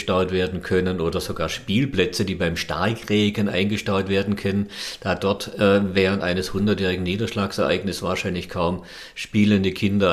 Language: German